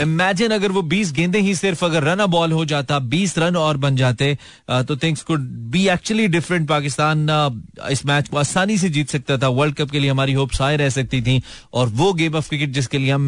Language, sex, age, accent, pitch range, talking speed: Hindi, male, 30-49, native, 130-170 Hz, 205 wpm